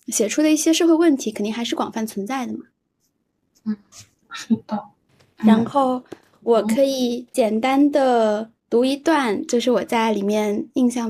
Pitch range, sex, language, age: 225-295 Hz, female, Chinese, 10-29